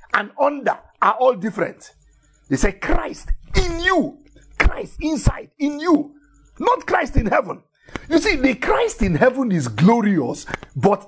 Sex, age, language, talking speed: male, 50-69, English, 145 wpm